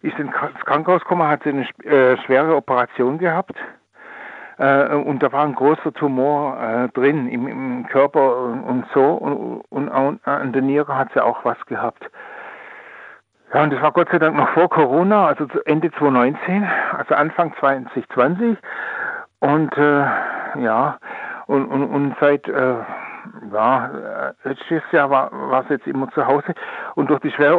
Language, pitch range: German, 140-160 Hz